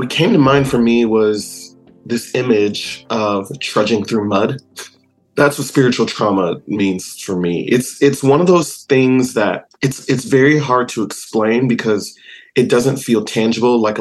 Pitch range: 105-130 Hz